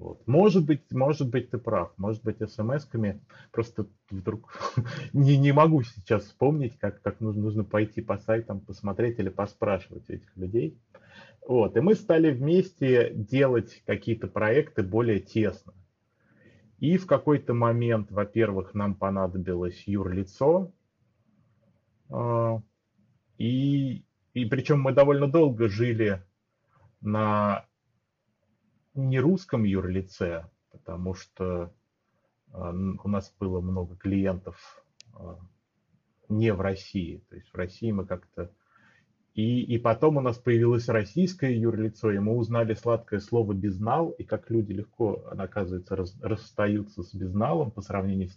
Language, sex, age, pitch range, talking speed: Russian, male, 30-49, 95-120 Hz, 120 wpm